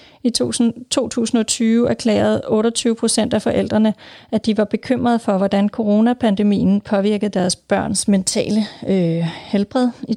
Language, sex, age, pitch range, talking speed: Danish, female, 30-49, 195-240 Hz, 130 wpm